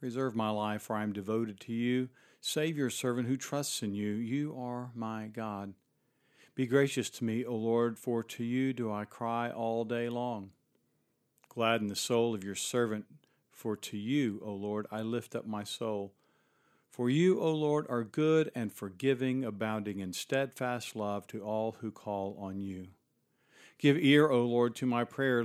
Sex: male